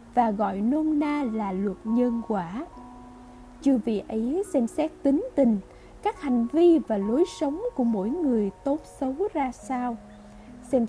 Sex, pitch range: female, 210-285 Hz